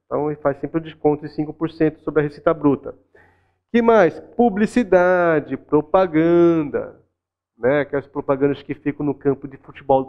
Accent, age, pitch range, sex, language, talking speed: Brazilian, 40-59, 145-185 Hz, male, Portuguese, 165 wpm